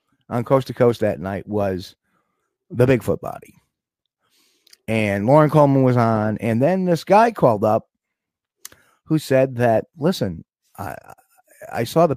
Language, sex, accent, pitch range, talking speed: English, male, American, 105-145 Hz, 145 wpm